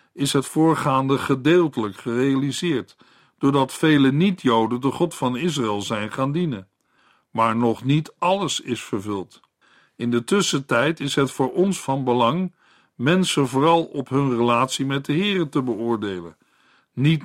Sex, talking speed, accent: male, 145 wpm, Dutch